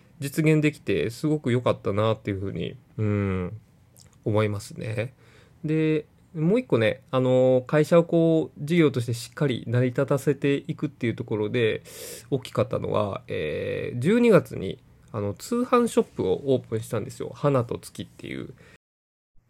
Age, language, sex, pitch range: 20-39, Japanese, male, 105-150 Hz